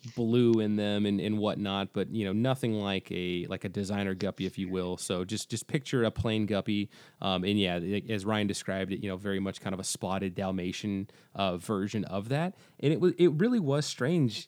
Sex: male